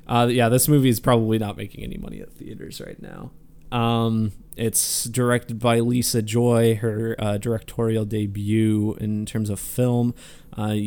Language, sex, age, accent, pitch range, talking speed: English, male, 20-39, American, 105-120 Hz, 160 wpm